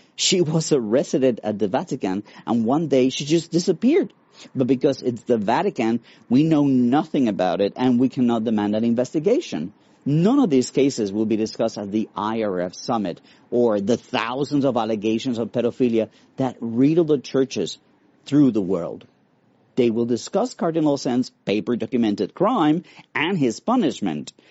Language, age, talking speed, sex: English, 50-69, 155 wpm, male